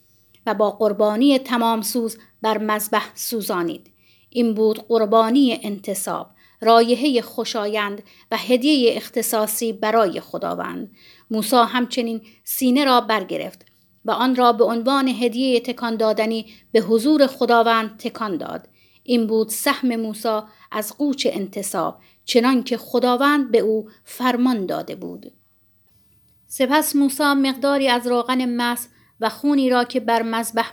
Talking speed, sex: 125 wpm, female